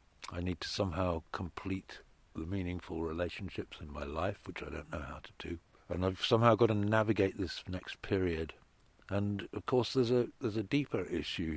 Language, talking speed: English, 185 wpm